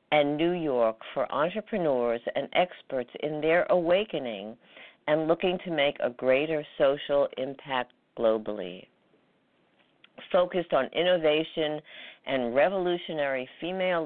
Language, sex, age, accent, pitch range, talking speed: English, female, 50-69, American, 140-175 Hz, 105 wpm